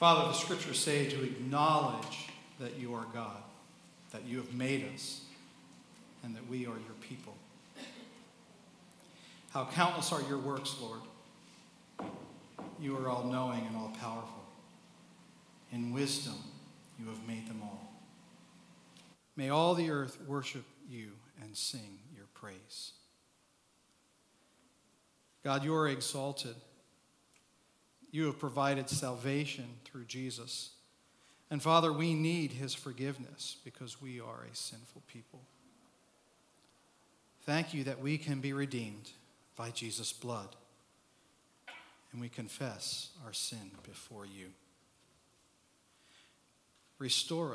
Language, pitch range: English, 115-145 Hz